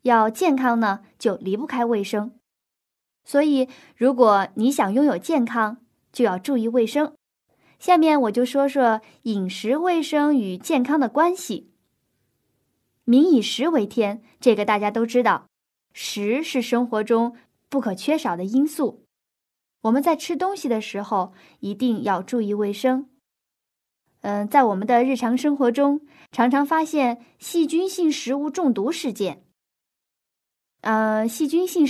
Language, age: Chinese, 20-39